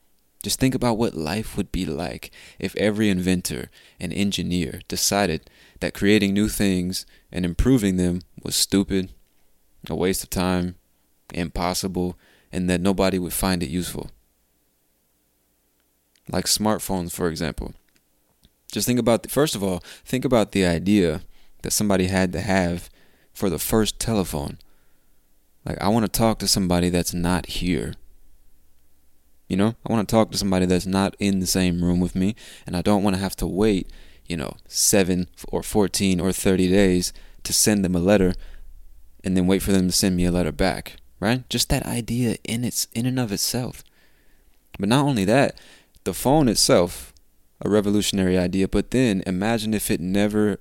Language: English